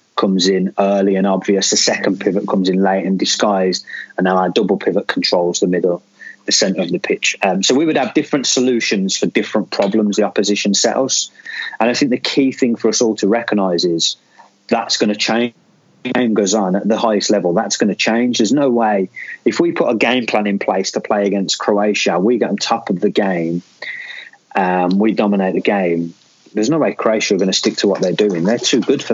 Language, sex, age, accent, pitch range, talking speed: English, male, 30-49, British, 100-120 Hz, 225 wpm